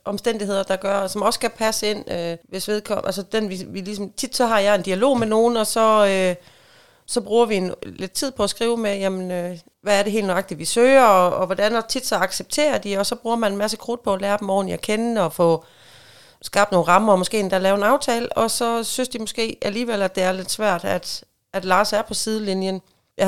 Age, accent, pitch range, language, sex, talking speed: 30-49, native, 185-225 Hz, Danish, female, 250 wpm